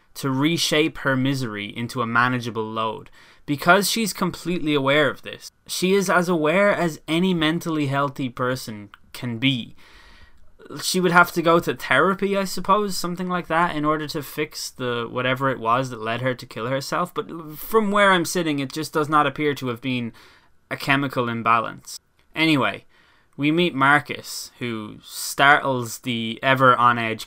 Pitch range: 115-150 Hz